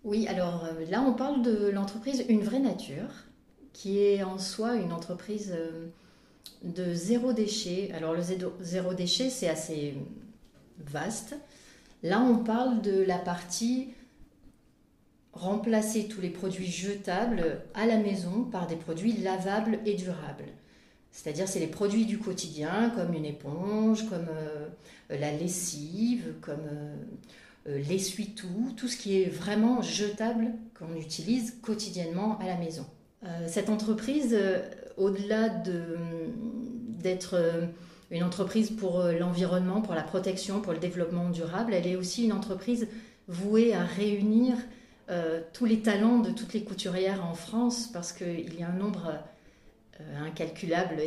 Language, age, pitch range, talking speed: French, 40-59, 175-220 Hz, 135 wpm